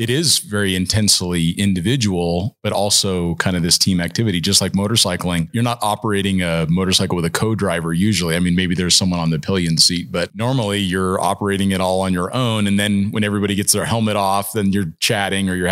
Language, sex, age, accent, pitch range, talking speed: English, male, 30-49, American, 95-110 Hz, 210 wpm